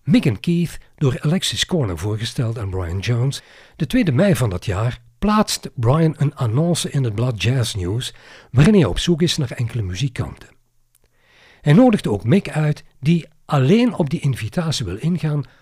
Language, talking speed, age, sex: Dutch, 175 wpm, 60-79, male